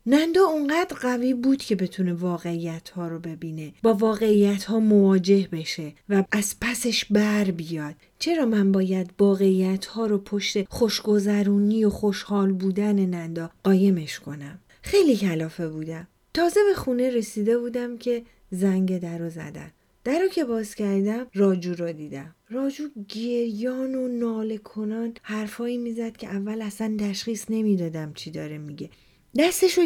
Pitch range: 190-260 Hz